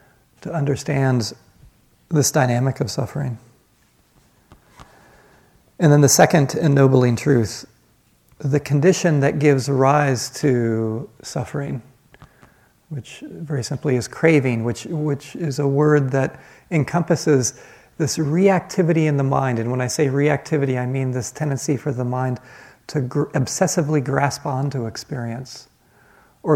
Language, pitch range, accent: English, 120-145 Hz, American